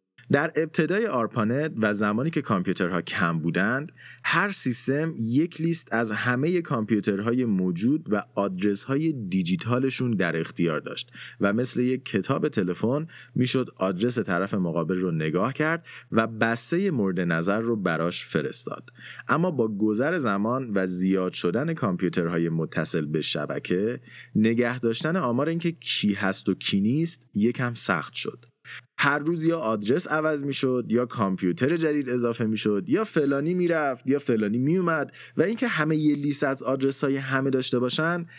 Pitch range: 100-145 Hz